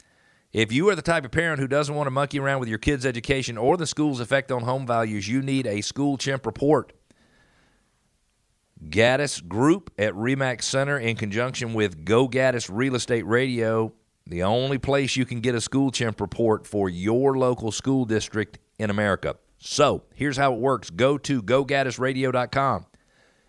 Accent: American